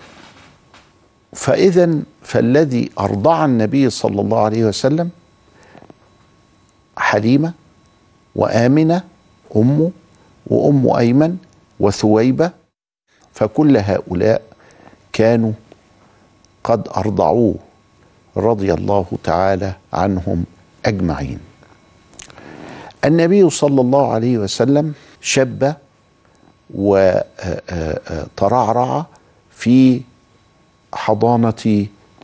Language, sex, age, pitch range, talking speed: Arabic, male, 50-69, 100-140 Hz, 65 wpm